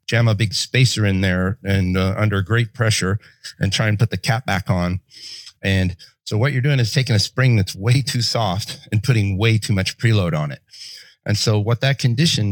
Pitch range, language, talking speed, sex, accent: 95-115 Hz, English, 215 wpm, male, American